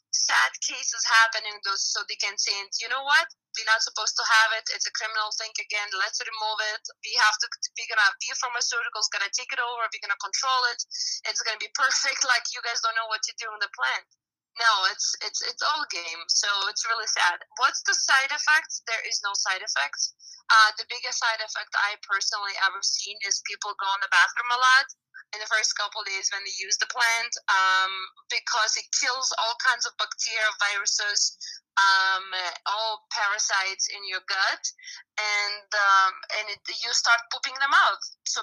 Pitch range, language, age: 200-245 Hz, English, 20-39